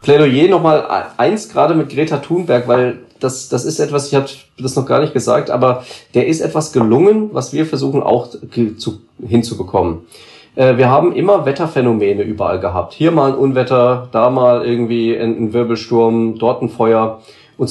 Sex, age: male, 40-59